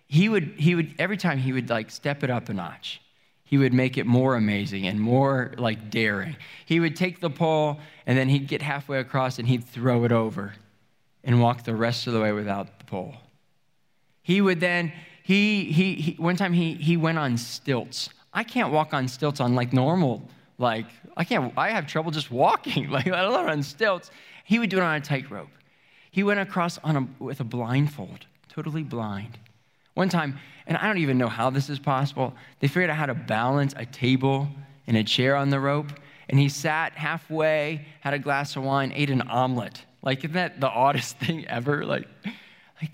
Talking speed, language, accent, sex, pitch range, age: 205 wpm, English, American, male, 125-160 Hz, 20-39